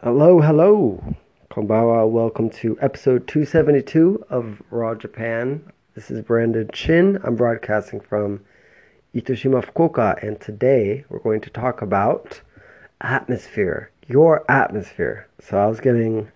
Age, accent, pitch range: 30-49, American, 105-125 Hz